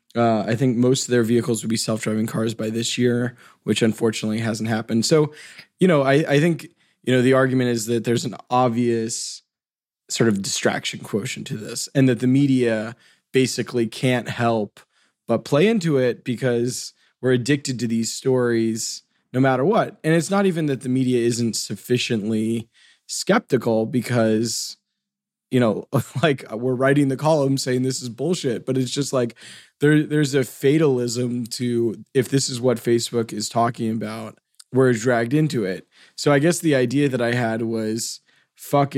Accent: American